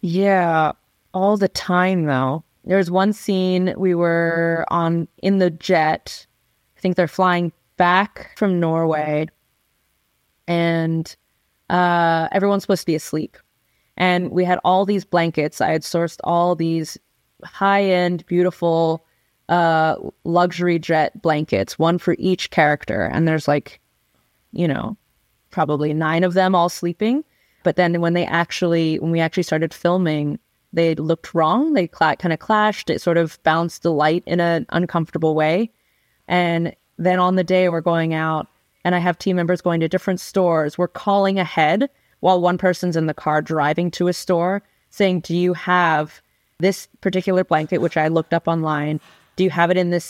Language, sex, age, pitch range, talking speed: English, female, 20-39, 165-185 Hz, 165 wpm